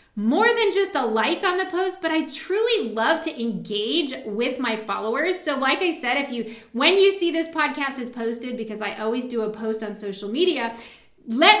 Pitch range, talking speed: 215-295 Hz, 205 wpm